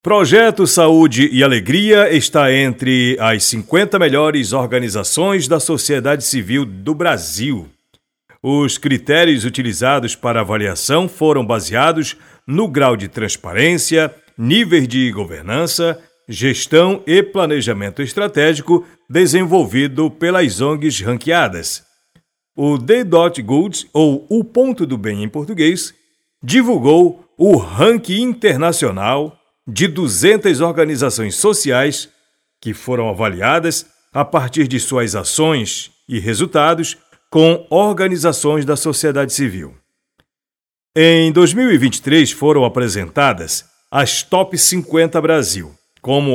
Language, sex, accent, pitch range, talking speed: Portuguese, male, Brazilian, 125-170 Hz, 100 wpm